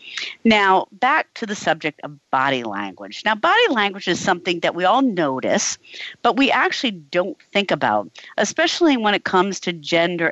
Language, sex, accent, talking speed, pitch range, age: English, female, American, 170 wpm, 145-225 Hz, 50-69